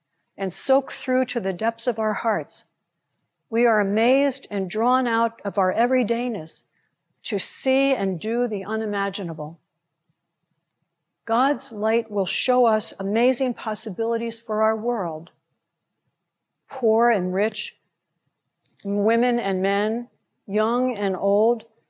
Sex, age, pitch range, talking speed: female, 60-79, 175-235 Hz, 120 wpm